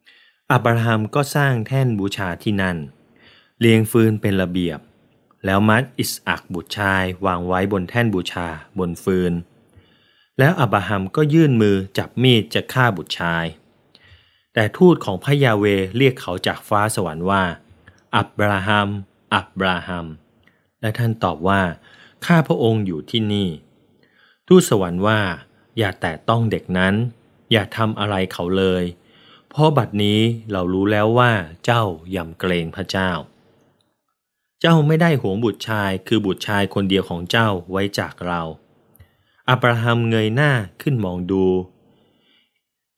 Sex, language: male, Thai